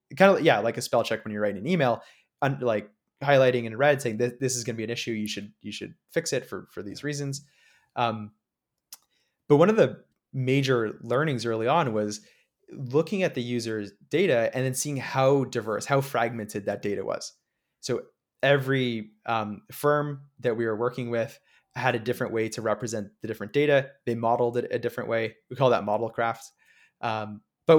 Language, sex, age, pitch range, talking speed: English, male, 20-39, 110-135 Hz, 200 wpm